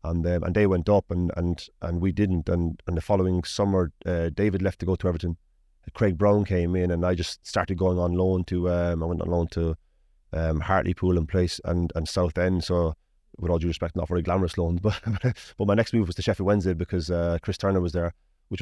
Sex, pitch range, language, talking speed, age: male, 85-100 Hz, English, 235 wpm, 30-49